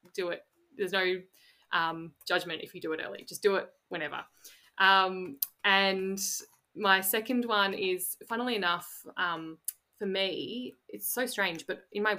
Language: English